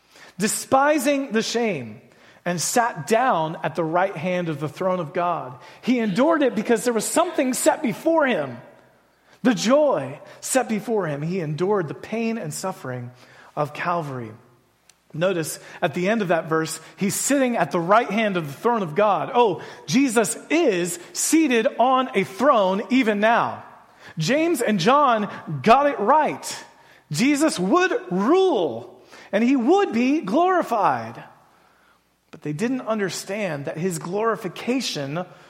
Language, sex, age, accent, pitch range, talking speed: English, male, 40-59, American, 160-240 Hz, 145 wpm